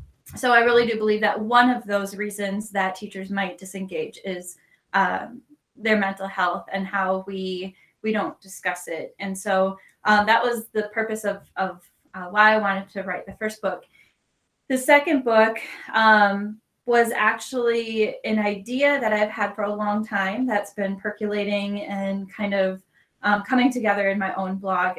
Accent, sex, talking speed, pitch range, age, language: American, female, 175 wpm, 195-220 Hz, 10-29, English